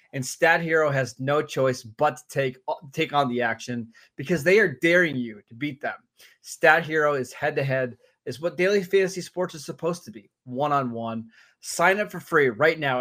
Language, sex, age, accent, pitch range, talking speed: English, male, 20-39, American, 125-170 Hz, 210 wpm